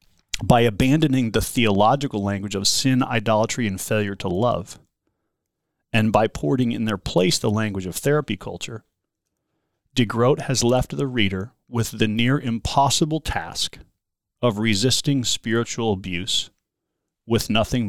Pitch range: 105-130 Hz